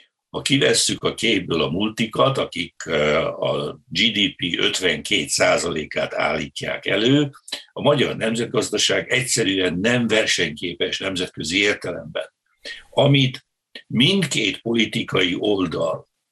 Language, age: Hungarian, 60-79